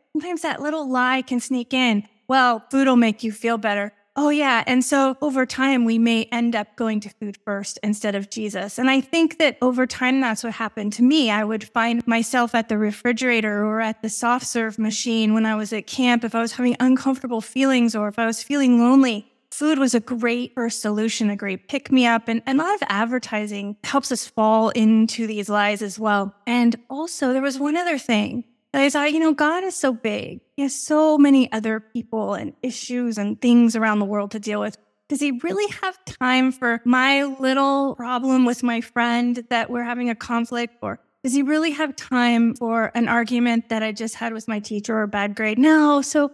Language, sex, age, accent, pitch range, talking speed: English, female, 20-39, American, 220-265 Hz, 210 wpm